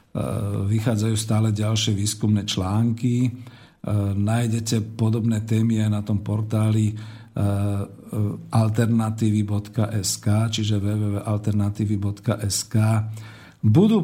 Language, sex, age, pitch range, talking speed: Slovak, male, 50-69, 110-135 Hz, 70 wpm